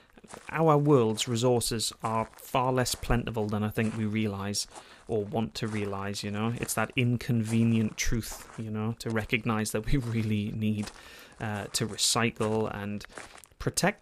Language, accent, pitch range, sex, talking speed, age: English, British, 115-135 Hz, male, 150 wpm, 30-49